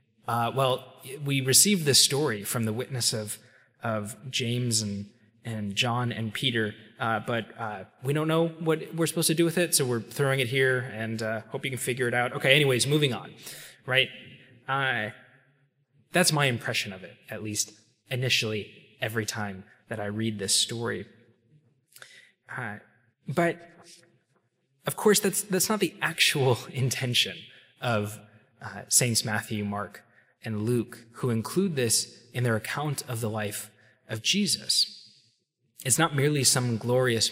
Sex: male